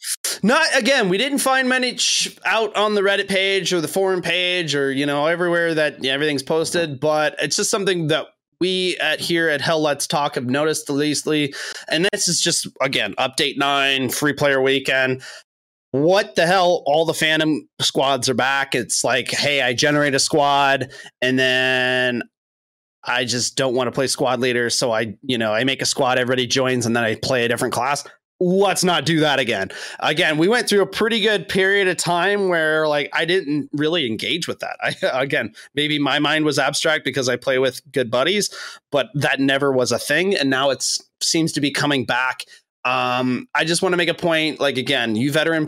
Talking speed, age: 200 wpm, 30-49